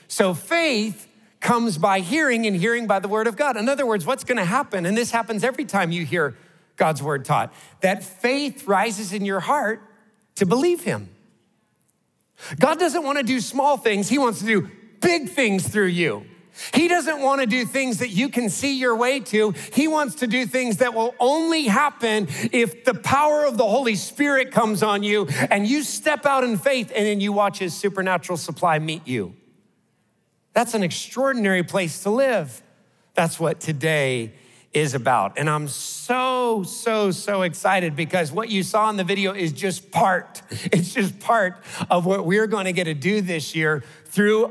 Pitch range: 180-240 Hz